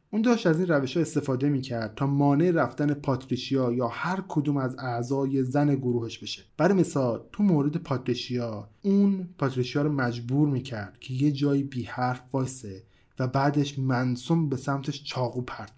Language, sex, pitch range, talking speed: Persian, male, 125-150 Hz, 165 wpm